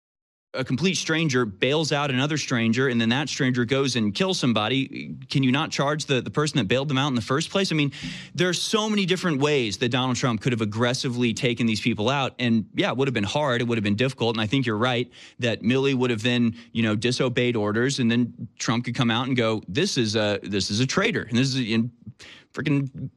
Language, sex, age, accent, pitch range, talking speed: English, male, 30-49, American, 115-145 Hz, 250 wpm